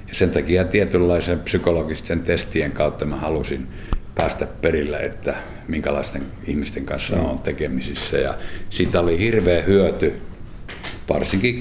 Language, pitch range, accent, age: Finnish, 80-95 Hz, native, 60-79